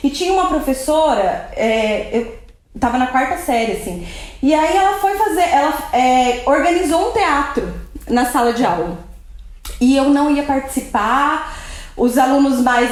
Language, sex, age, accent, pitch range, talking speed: Portuguese, female, 20-39, Brazilian, 245-320 Hz, 155 wpm